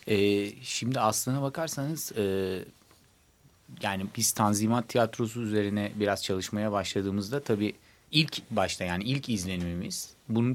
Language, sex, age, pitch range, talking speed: Turkish, male, 40-59, 95-120 Hz, 115 wpm